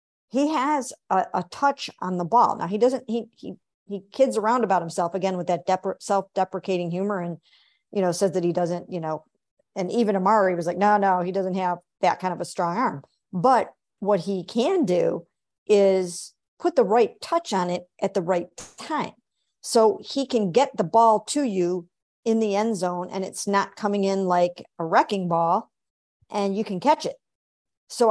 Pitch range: 190-230 Hz